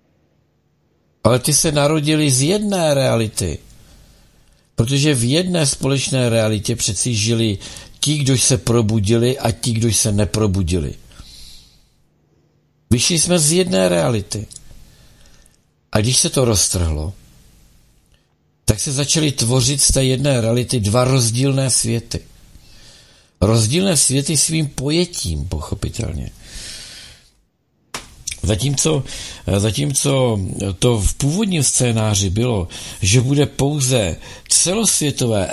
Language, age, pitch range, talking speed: Czech, 60-79, 105-145 Hz, 100 wpm